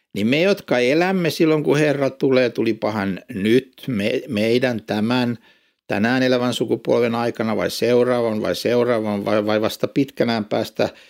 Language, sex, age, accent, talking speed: Finnish, male, 60-79, native, 140 wpm